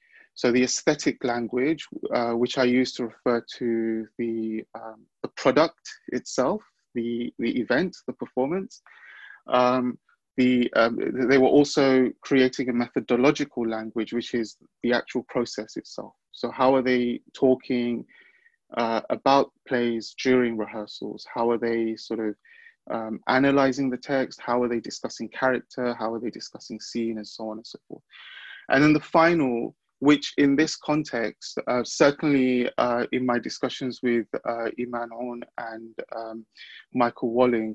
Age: 30-49